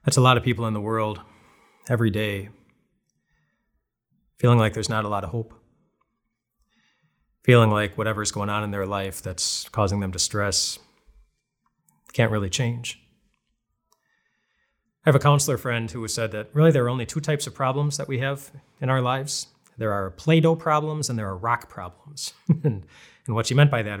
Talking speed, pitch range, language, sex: 175 wpm, 105-135 Hz, English, male